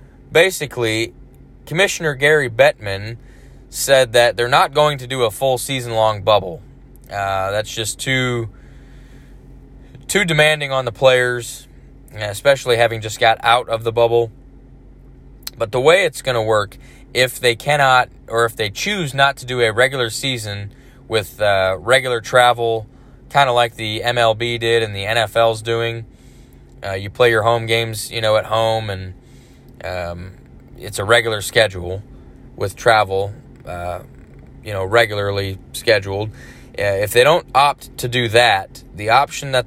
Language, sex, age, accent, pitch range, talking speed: English, male, 20-39, American, 105-130 Hz, 150 wpm